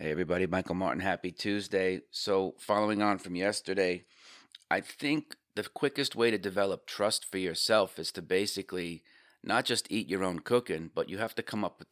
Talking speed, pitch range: 185 wpm, 90-105 Hz